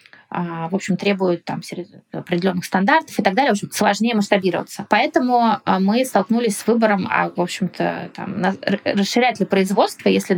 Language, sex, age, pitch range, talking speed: Russian, female, 20-39, 185-225 Hz, 155 wpm